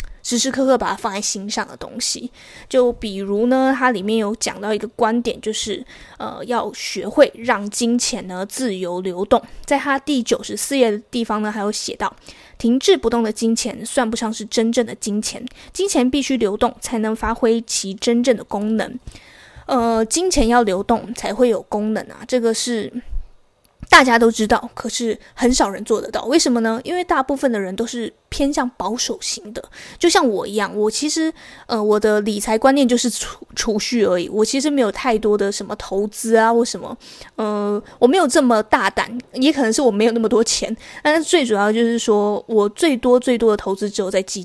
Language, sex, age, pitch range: Chinese, female, 20-39, 210-255 Hz